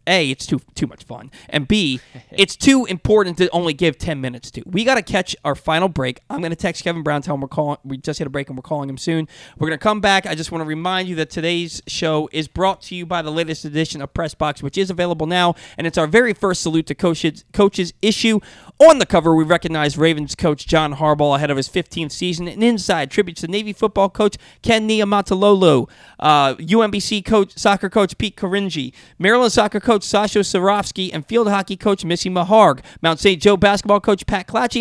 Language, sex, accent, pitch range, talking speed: English, male, American, 160-205 Hz, 225 wpm